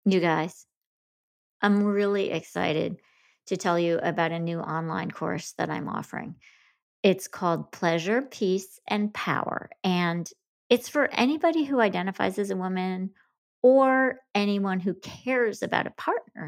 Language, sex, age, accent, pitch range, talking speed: English, female, 40-59, American, 170-225 Hz, 140 wpm